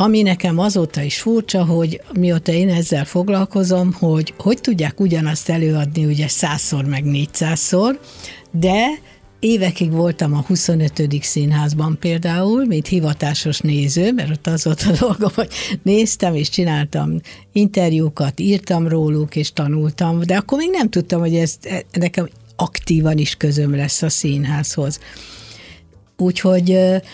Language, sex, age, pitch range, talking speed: Hungarian, female, 60-79, 150-195 Hz, 130 wpm